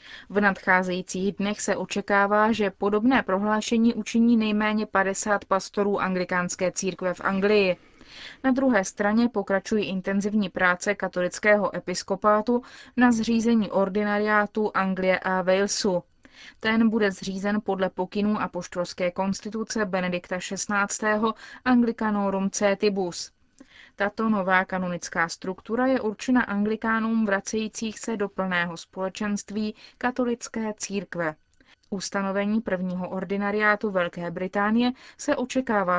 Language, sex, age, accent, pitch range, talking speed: Czech, female, 20-39, native, 190-220 Hz, 105 wpm